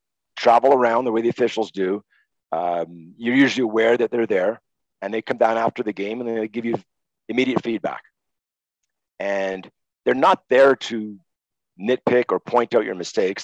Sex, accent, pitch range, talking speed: male, American, 100-130 Hz, 170 wpm